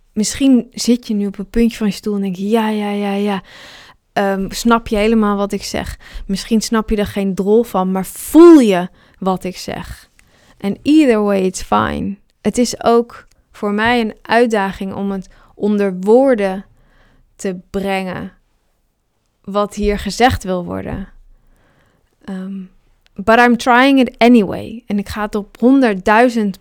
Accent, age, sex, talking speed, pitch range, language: Dutch, 20-39, female, 165 wpm, 195-230 Hz, English